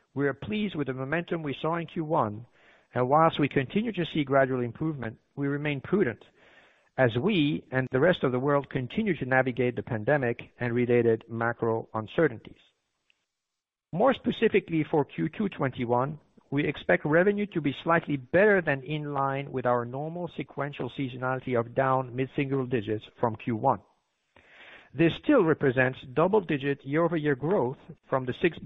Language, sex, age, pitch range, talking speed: English, male, 50-69, 125-155 Hz, 155 wpm